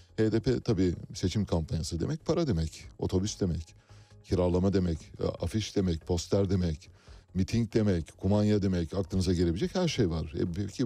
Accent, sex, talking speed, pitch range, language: native, male, 140 wpm, 85-115 Hz, Turkish